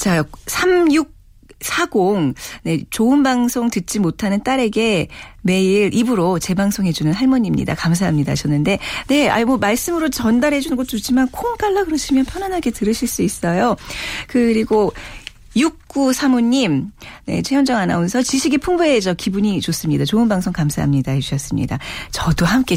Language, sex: Korean, female